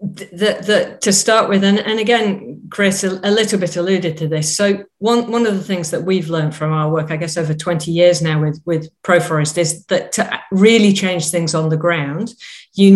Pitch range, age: 160-195 Hz, 40-59